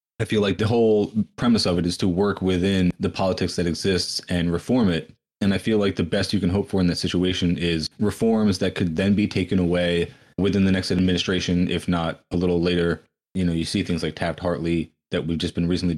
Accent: American